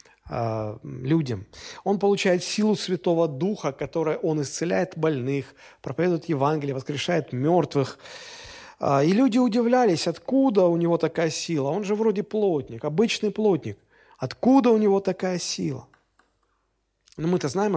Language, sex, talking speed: Russian, male, 120 wpm